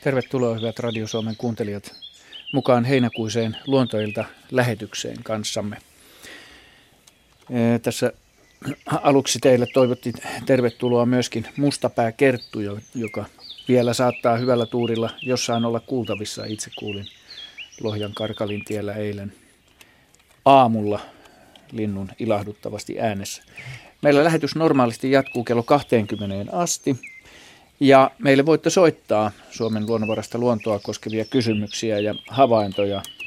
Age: 40-59